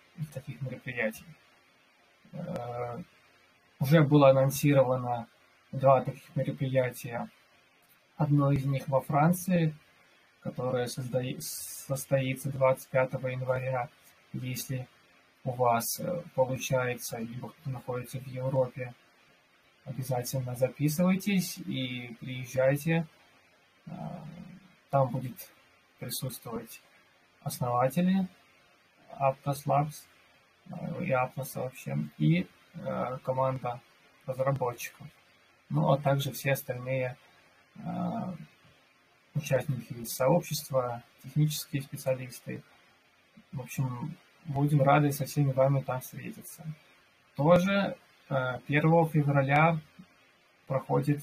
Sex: male